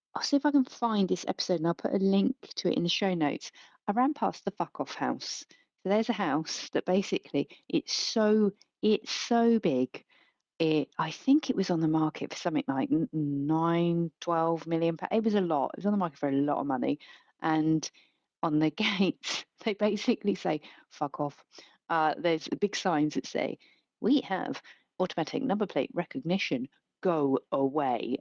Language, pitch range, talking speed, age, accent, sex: English, 160-210 Hz, 190 wpm, 40-59, British, female